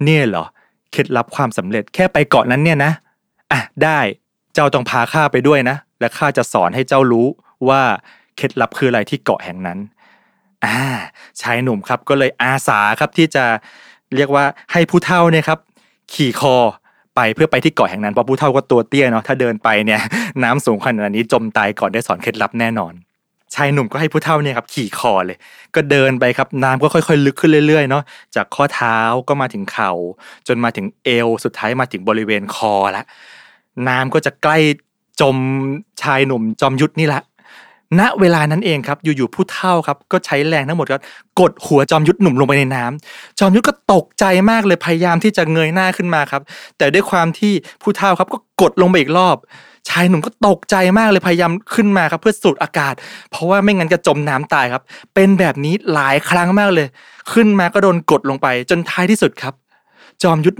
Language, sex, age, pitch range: Thai, male, 20-39, 130-180 Hz